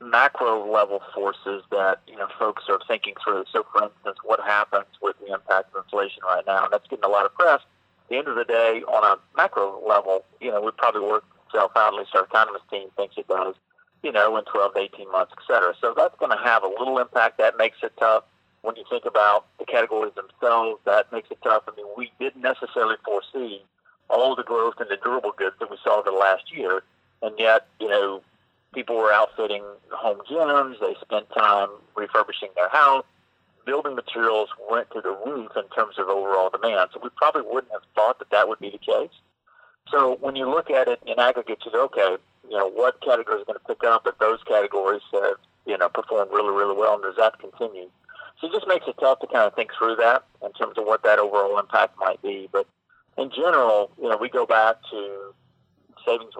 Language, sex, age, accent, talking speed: English, male, 40-59, American, 220 wpm